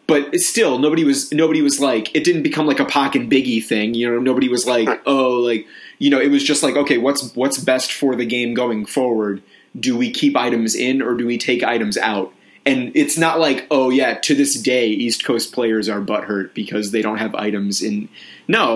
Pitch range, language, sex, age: 110-135 Hz, English, male, 30-49